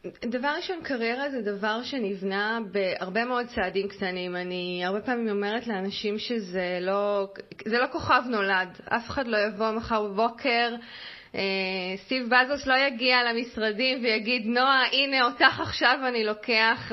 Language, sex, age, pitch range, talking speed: Hebrew, female, 20-39, 195-245 Hz, 135 wpm